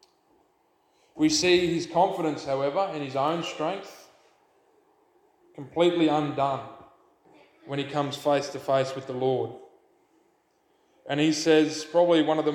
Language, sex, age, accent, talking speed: English, male, 20-39, Australian, 130 wpm